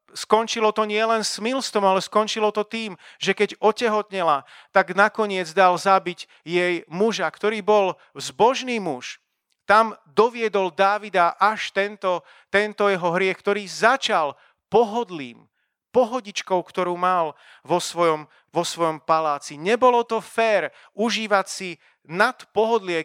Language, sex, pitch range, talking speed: Slovak, male, 165-205 Hz, 125 wpm